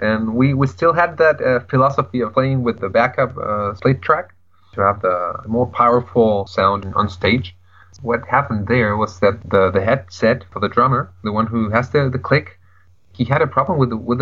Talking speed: 205 wpm